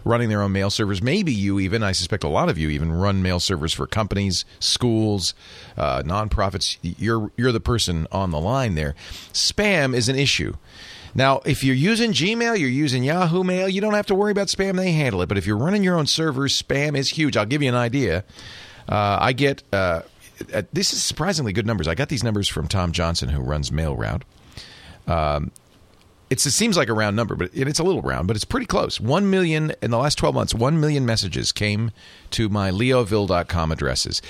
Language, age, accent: English, 40-59, American